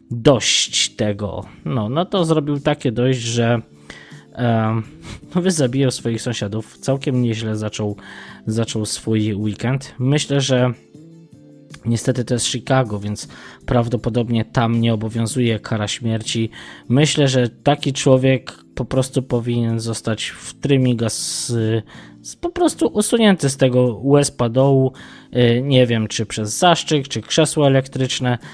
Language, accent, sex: Polish, native, male